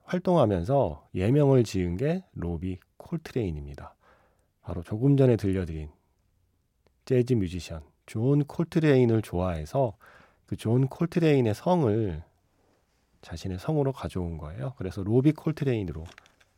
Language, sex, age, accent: Korean, male, 40-59, native